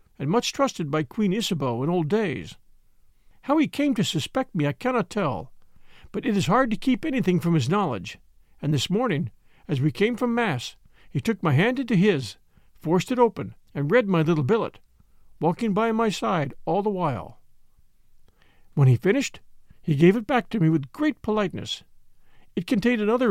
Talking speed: 185 wpm